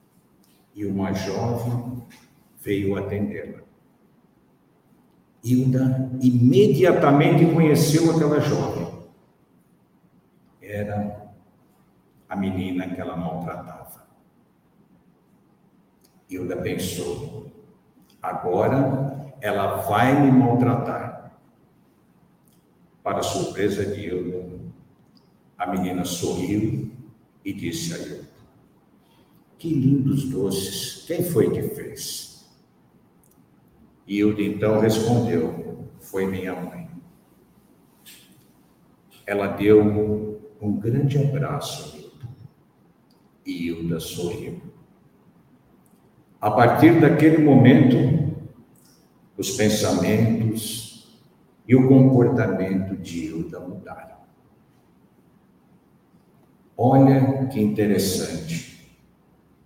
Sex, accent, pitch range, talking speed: male, Brazilian, 95-135 Hz, 75 wpm